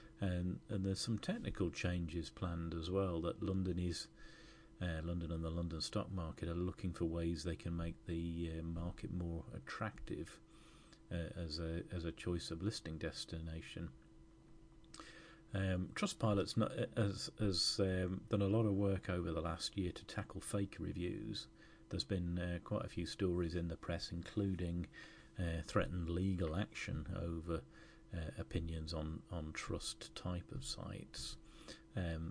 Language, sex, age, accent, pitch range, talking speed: English, male, 40-59, British, 85-100 Hz, 160 wpm